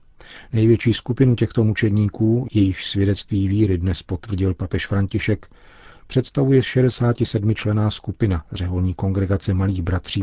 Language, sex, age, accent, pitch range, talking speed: Czech, male, 40-59, native, 95-110 Hz, 110 wpm